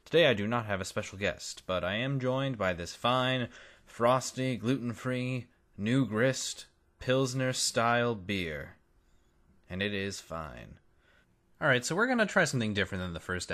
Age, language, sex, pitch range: 20-39, English, male, 100-130 Hz